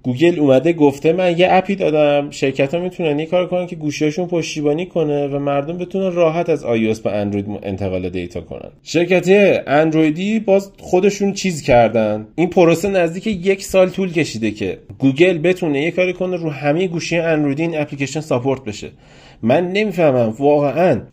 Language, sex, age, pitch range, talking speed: Persian, male, 30-49, 110-155 Hz, 160 wpm